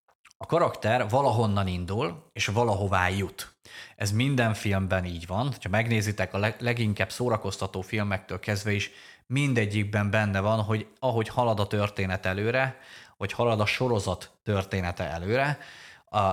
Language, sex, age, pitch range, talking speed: Hungarian, male, 30-49, 95-115 Hz, 135 wpm